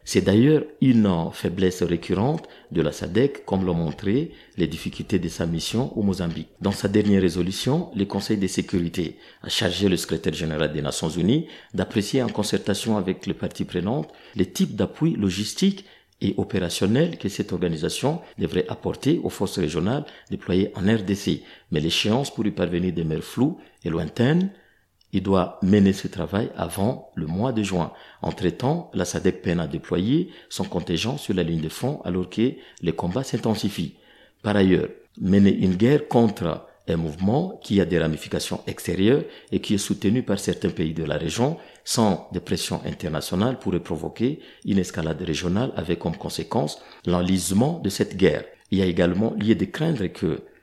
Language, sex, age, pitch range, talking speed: French, male, 50-69, 85-105 Hz, 170 wpm